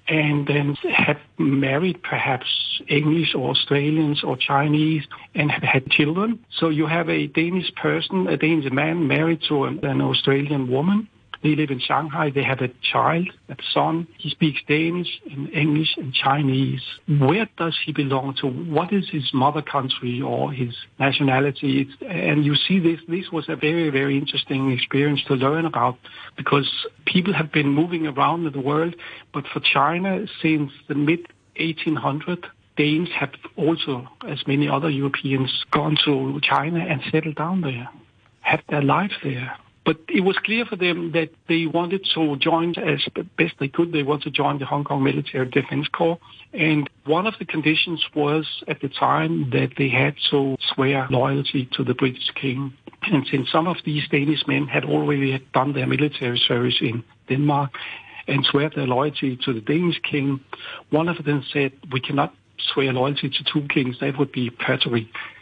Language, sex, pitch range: English, male, 135-160 Hz